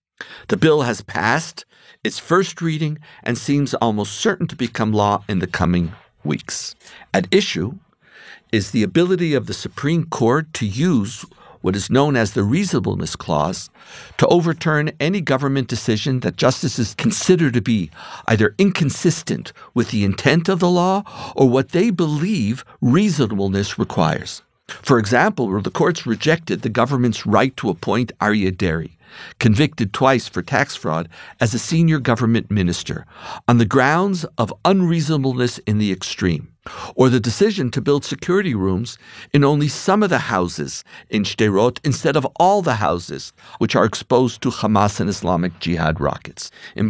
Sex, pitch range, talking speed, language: male, 105-155 Hz, 150 wpm, English